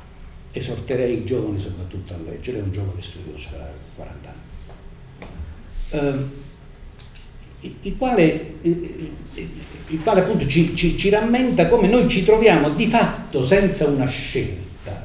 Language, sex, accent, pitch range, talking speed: Italian, male, native, 105-145 Hz, 130 wpm